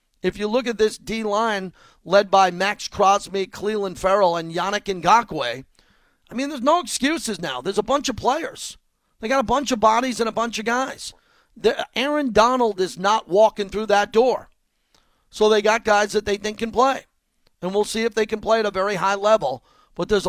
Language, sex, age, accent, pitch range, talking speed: English, male, 40-59, American, 185-220 Hz, 200 wpm